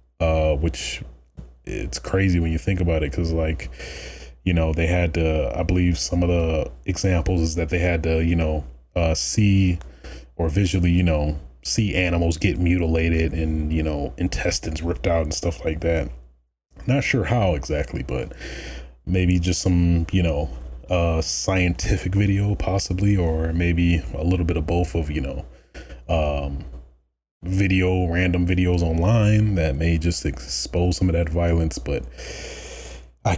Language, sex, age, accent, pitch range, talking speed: English, male, 30-49, American, 75-90 Hz, 160 wpm